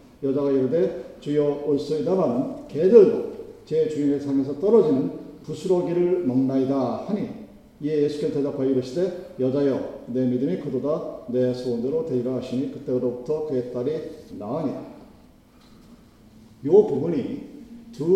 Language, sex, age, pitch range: Korean, male, 50-69, 140-195 Hz